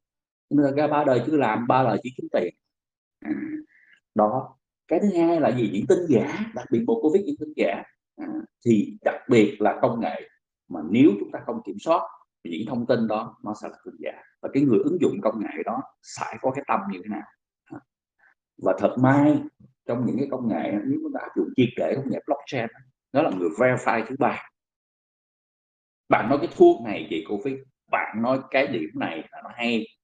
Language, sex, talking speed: Vietnamese, male, 210 wpm